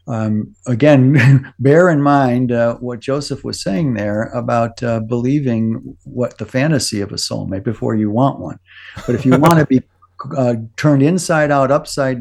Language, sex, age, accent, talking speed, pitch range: English, male, 50-69, American, 170 wpm, 110-140 Hz